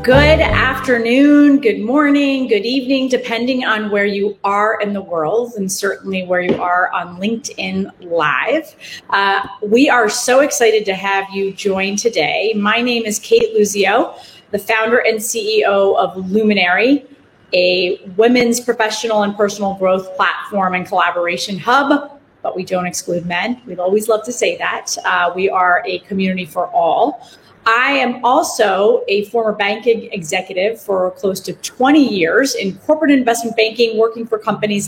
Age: 30-49